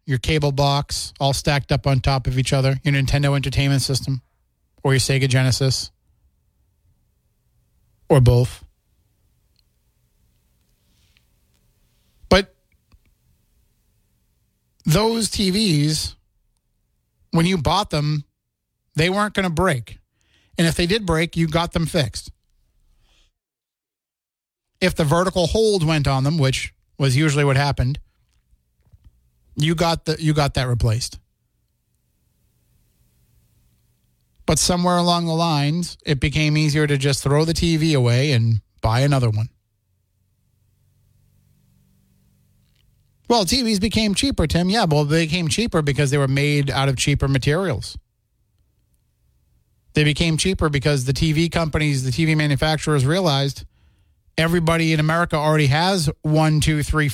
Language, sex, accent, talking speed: English, male, American, 120 wpm